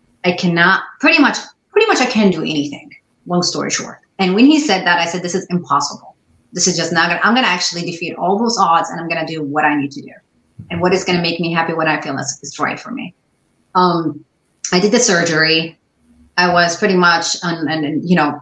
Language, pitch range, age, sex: English, 155-190 Hz, 30-49, female